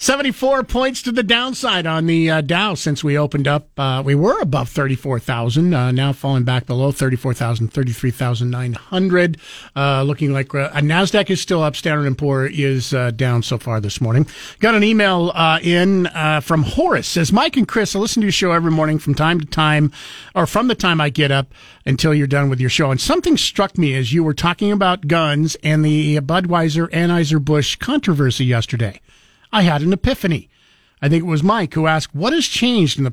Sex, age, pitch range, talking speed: male, 50-69, 140-180 Hz, 205 wpm